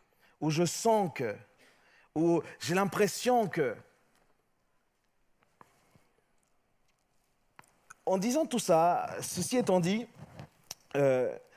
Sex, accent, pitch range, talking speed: male, French, 175-250 Hz, 85 wpm